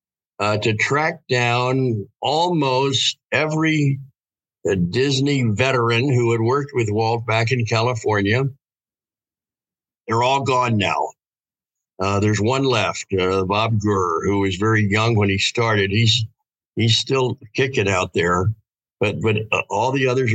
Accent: American